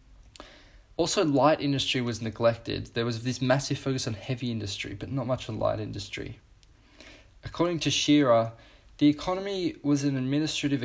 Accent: Australian